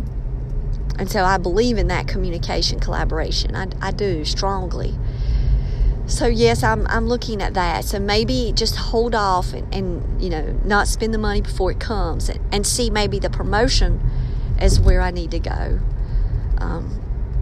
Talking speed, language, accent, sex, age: 165 wpm, English, American, female, 40-59